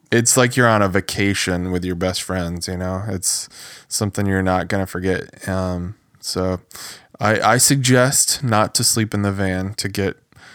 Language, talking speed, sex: English, 180 wpm, male